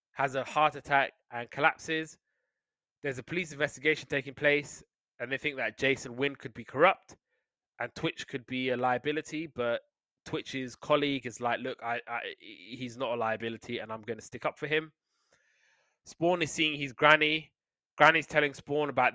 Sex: male